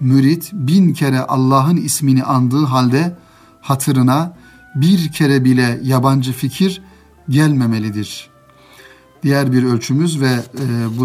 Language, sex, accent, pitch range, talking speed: Turkish, male, native, 120-155 Hz, 110 wpm